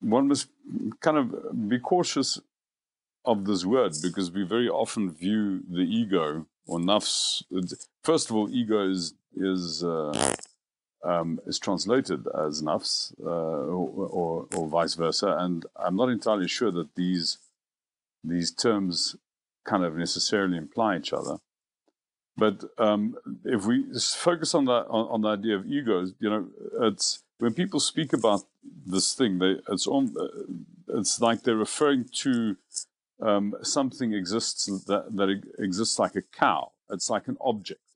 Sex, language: male, English